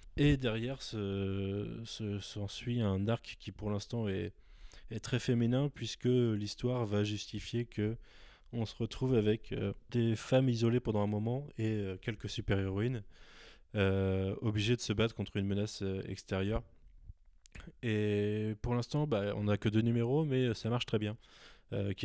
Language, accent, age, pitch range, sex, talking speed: French, French, 20-39, 100-120 Hz, male, 150 wpm